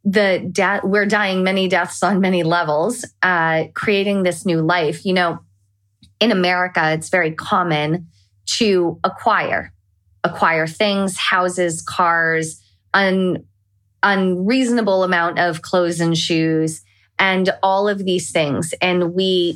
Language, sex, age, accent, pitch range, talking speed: English, female, 20-39, American, 155-190 Hz, 130 wpm